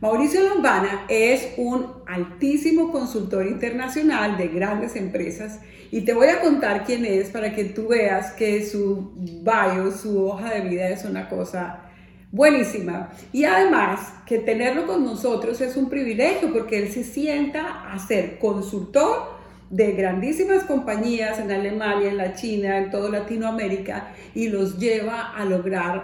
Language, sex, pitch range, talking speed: Spanish, female, 195-255 Hz, 145 wpm